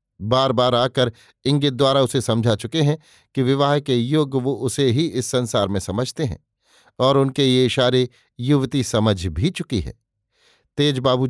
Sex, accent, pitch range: male, native, 115-150 Hz